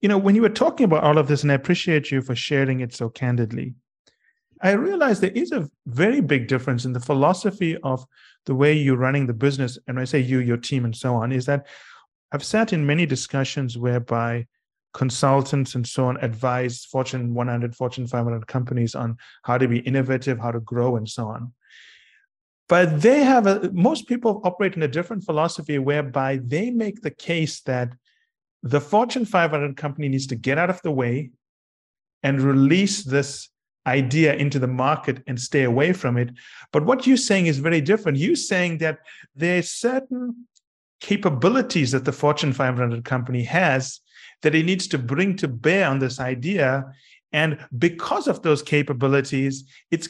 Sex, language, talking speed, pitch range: male, English, 180 wpm, 130-170 Hz